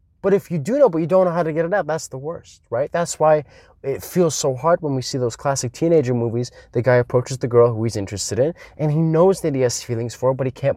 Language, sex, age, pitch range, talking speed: English, male, 20-39, 125-175 Hz, 290 wpm